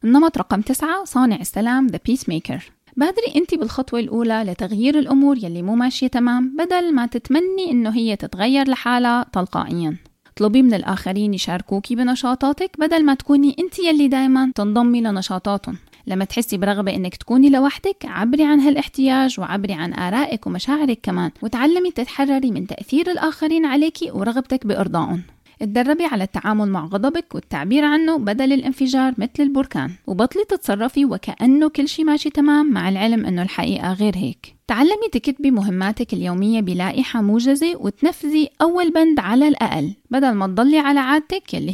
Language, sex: Arabic, female